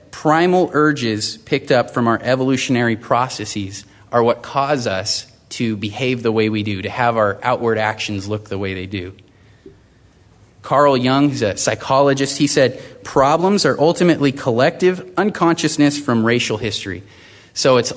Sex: male